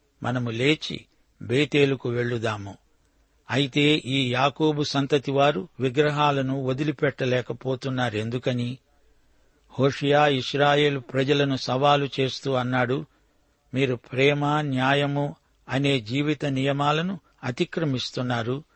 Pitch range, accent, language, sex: 130-145 Hz, native, Telugu, male